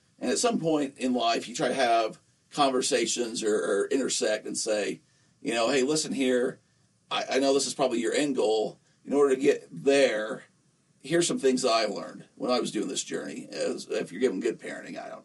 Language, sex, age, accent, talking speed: English, male, 40-59, American, 220 wpm